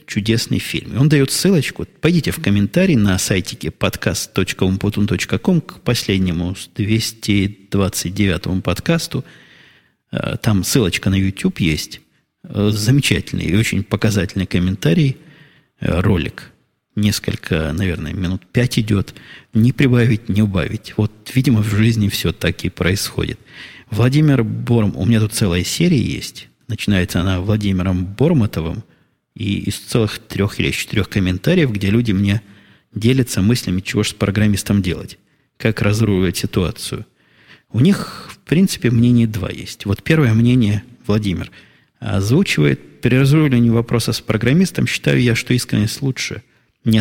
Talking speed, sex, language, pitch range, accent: 125 wpm, male, Russian, 100-120 Hz, native